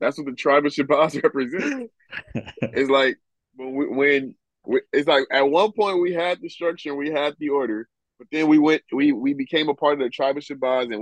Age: 20-39